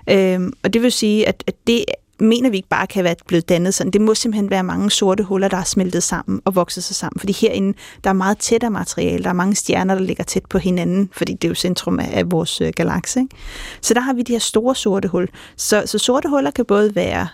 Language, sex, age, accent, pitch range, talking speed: Danish, female, 30-49, native, 190-230 Hz, 255 wpm